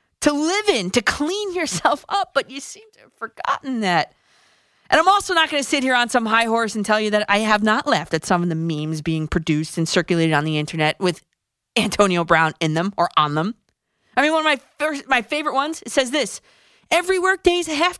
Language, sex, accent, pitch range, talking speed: English, female, American, 175-265 Hz, 235 wpm